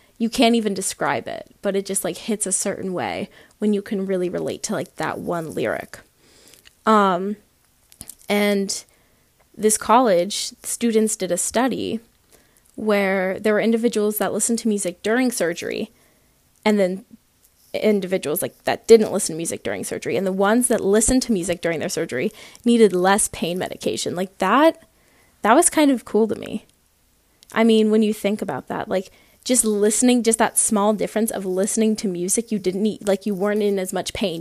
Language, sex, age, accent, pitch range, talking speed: English, female, 20-39, American, 190-225 Hz, 180 wpm